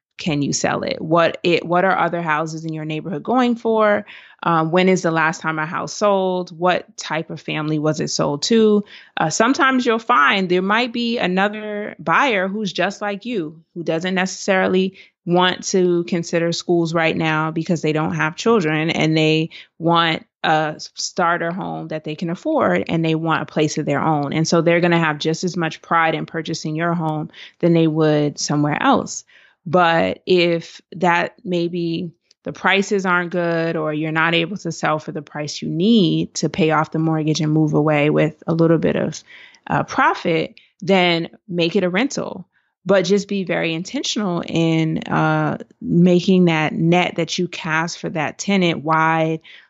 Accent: American